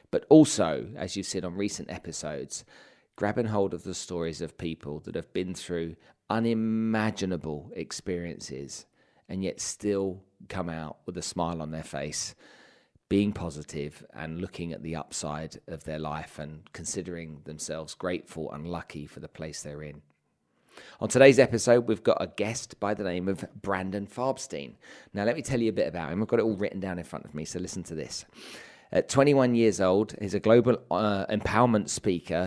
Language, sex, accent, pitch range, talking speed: English, male, British, 85-110 Hz, 185 wpm